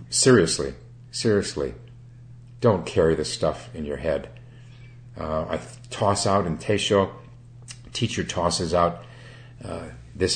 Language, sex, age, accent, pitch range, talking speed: English, male, 50-69, American, 80-120 Hz, 120 wpm